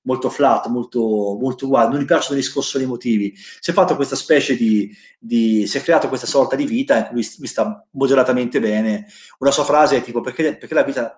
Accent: native